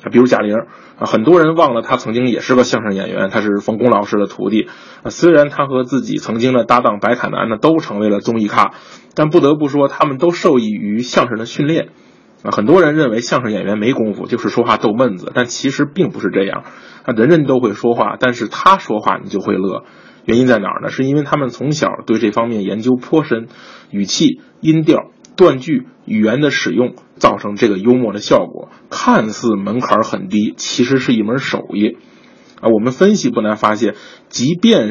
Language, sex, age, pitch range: Chinese, male, 20-39, 110-155 Hz